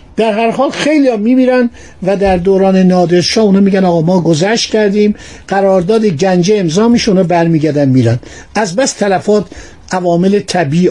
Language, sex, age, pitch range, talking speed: Persian, male, 60-79, 175-225 Hz, 150 wpm